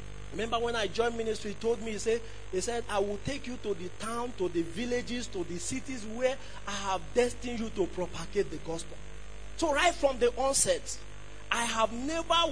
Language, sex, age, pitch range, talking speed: English, male, 40-59, 180-270 Hz, 200 wpm